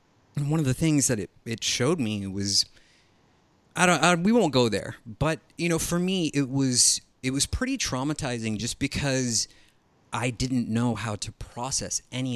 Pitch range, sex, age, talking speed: 105-140 Hz, male, 30-49, 180 wpm